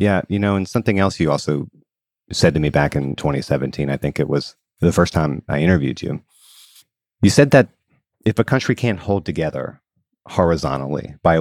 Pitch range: 80-110 Hz